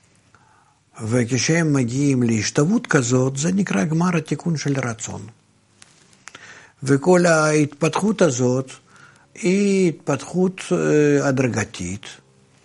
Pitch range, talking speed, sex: 115-155 Hz, 75 wpm, male